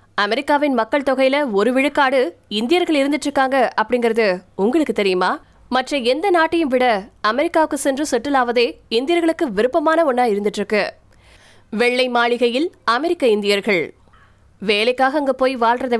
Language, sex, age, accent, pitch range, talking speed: Tamil, female, 20-39, native, 225-285 Hz, 115 wpm